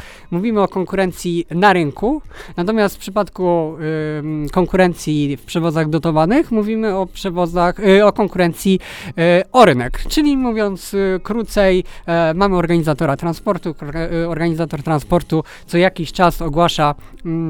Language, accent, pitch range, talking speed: Polish, native, 150-185 Hz, 125 wpm